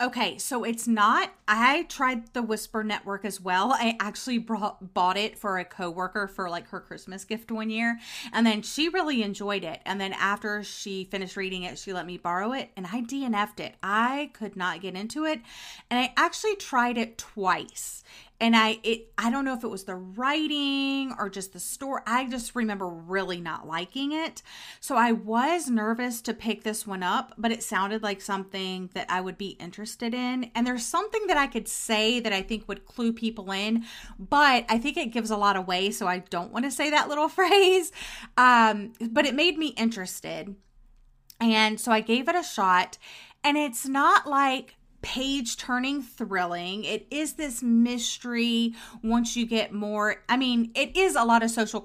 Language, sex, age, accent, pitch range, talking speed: English, female, 30-49, American, 195-250 Hz, 195 wpm